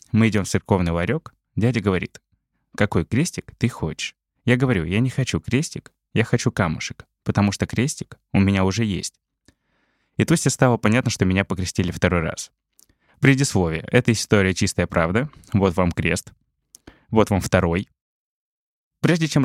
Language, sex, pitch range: Russian, male, 95-125 Hz